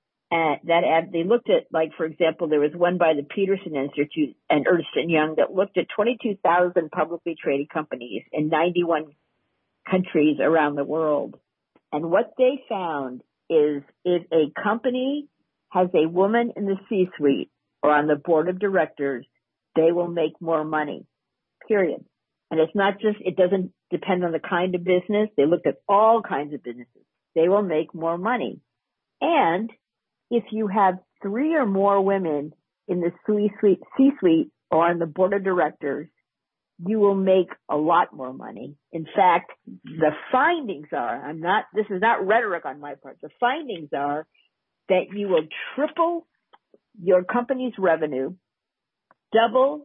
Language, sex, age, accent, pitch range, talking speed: English, female, 50-69, American, 160-210 Hz, 160 wpm